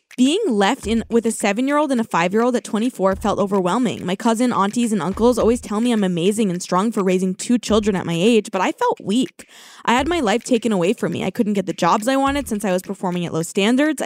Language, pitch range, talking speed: English, 195-250 Hz, 245 wpm